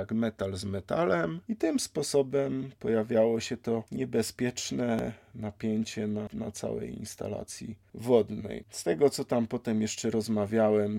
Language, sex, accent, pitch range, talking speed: Polish, male, native, 105-135 Hz, 130 wpm